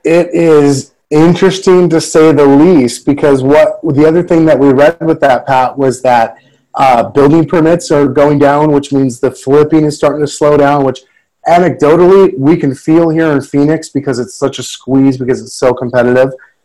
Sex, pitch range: male, 125-155 Hz